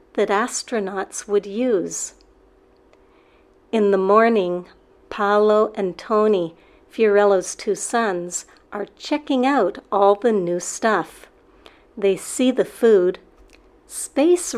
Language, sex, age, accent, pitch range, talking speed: English, female, 60-79, American, 195-240 Hz, 105 wpm